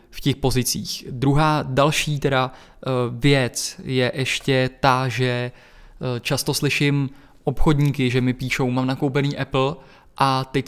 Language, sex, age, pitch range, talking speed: Czech, male, 20-39, 130-145 Hz, 125 wpm